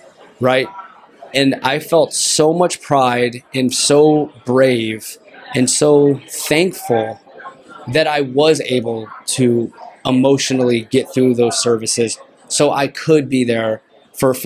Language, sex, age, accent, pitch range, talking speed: English, male, 20-39, American, 125-145 Hz, 120 wpm